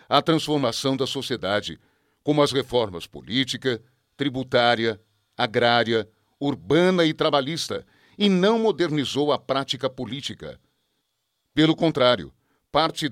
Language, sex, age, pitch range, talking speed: Portuguese, male, 60-79, 120-155 Hz, 100 wpm